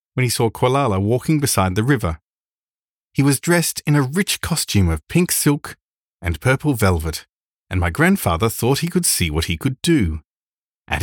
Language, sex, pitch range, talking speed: English, male, 90-140 Hz, 180 wpm